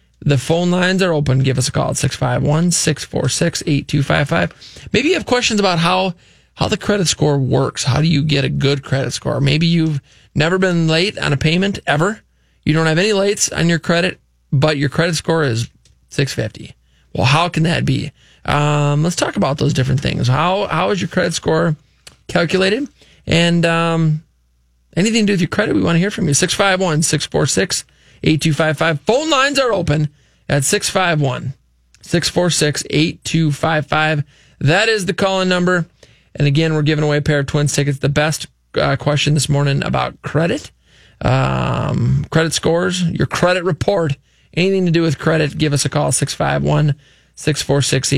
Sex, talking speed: male, 170 wpm